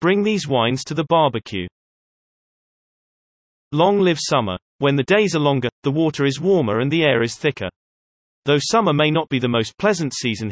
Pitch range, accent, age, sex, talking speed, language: 115-165 Hz, British, 30-49, male, 185 wpm, English